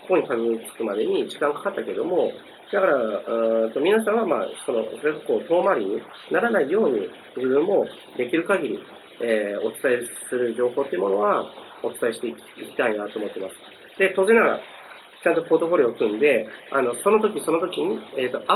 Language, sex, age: Japanese, male, 40-59